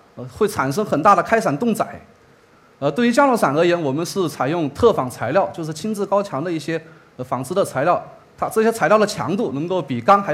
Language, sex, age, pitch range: Chinese, male, 30-49, 160-220 Hz